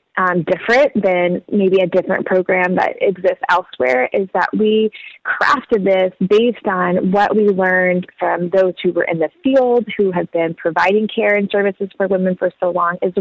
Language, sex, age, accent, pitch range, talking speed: English, female, 20-39, American, 175-210 Hz, 180 wpm